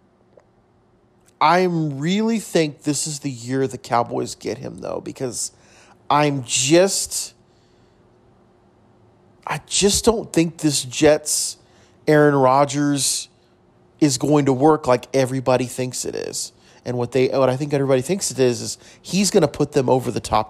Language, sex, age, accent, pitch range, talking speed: English, male, 30-49, American, 130-160 Hz, 150 wpm